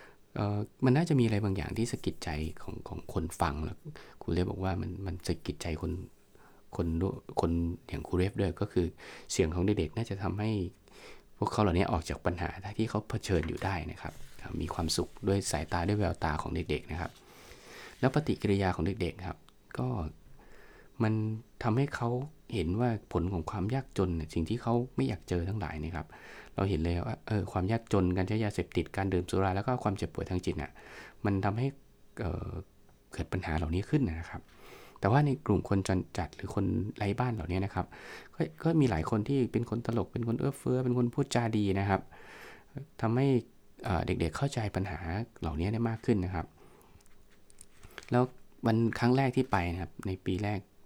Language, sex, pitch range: English, male, 90-115 Hz